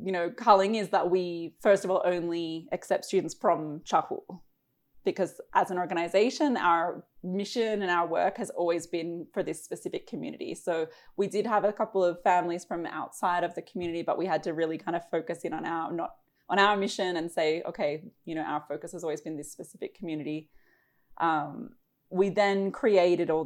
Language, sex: English, female